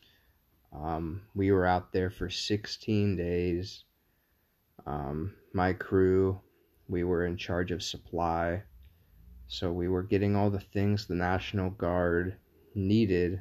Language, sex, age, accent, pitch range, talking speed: English, male, 30-49, American, 80-95 Hz, 125 wpm